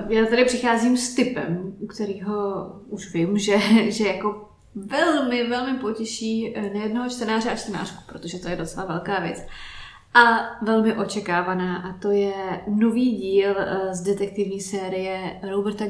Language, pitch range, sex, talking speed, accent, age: Czech, 195-220 Hz, female, 140 wpm, native, 20-39